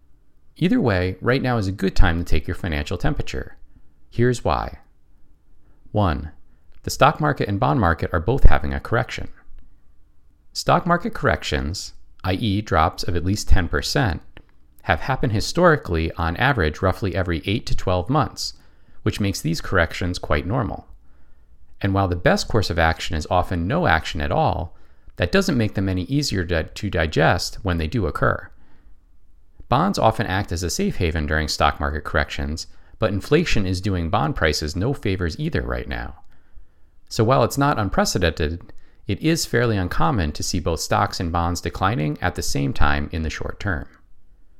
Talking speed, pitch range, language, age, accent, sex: 165 wpm, 75-100 Hz, English, 40-59, American, male